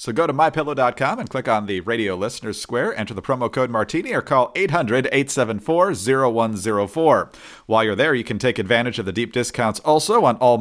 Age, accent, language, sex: 40-59, American, English, male